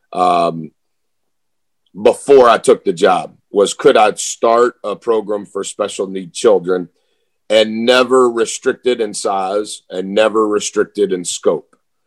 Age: 50-69